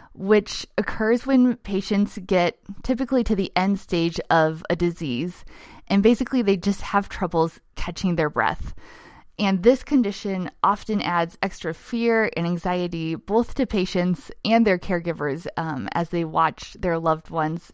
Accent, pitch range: American, 170-225 Hz